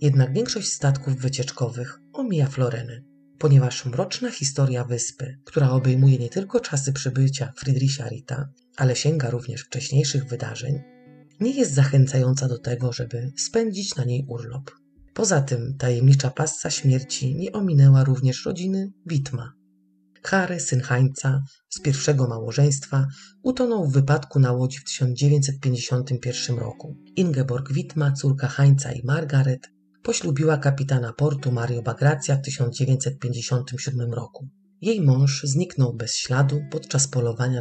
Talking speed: 125 wpm